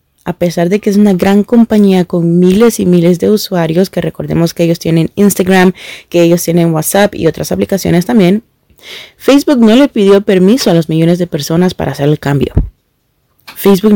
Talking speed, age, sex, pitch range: 185 wpm, 30-49, female, 170-195 Hz